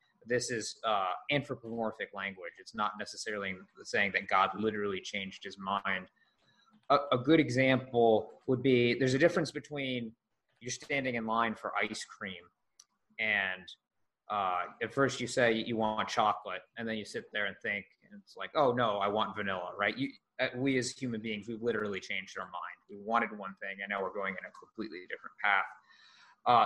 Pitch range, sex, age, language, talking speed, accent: 110-130 Hz, male, 20-39, English, 180 wpm, American